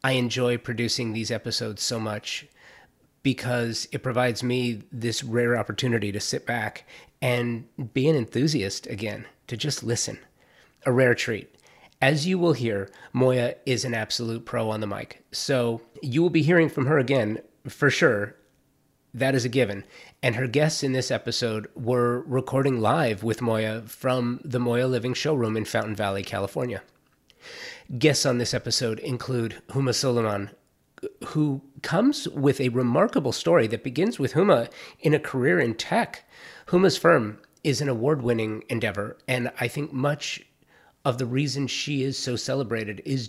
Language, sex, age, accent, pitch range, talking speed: English, male, 30-49, American, 115-135 Hz, 160 wpm